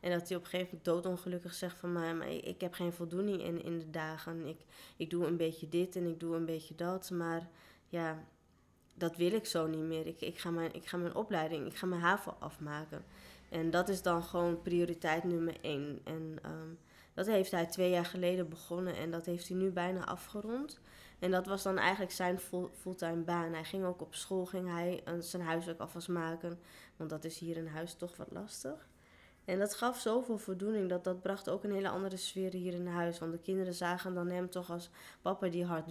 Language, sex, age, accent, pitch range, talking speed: Dutch, female, 20-39, Dutch, 165-180 Hz, 210 wpm